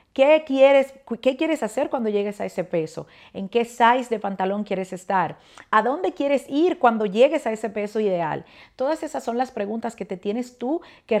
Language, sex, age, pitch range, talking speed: Spanish, female, 40-59, 190-235 Hz, 200 wpm